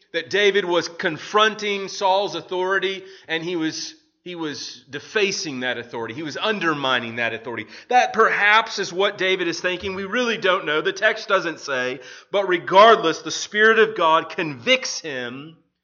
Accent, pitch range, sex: American, 145-195 Hz, male